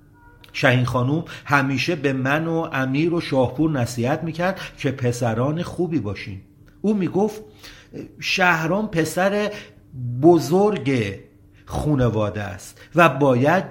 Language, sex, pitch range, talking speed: Persian, male, 120-165 Hz, 105 wpm